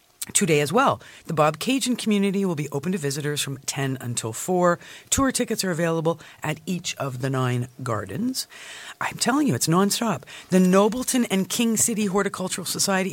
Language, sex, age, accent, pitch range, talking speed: English, female, 50-69, American, 140-200 Hz, 180 wpm